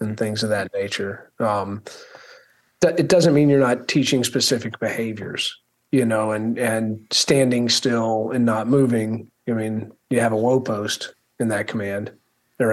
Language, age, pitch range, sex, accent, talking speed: English, 40-59, 110-140 Hz, male, American, 165 wpm